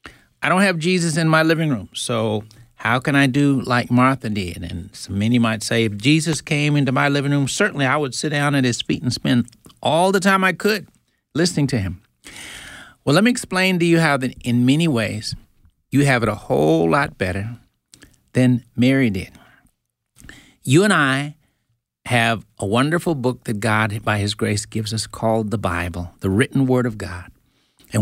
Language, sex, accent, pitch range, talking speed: English, male, American, 115-155 Hz, 190 wpm